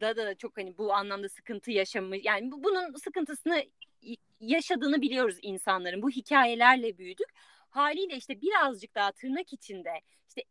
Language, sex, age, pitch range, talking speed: Turkish, female, 30-49, 220-320 Hz, 145 wpm